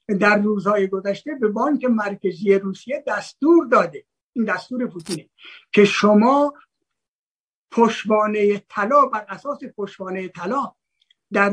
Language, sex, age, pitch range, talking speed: Persian, male, 60-79, 195-250 Hz, 110 wpm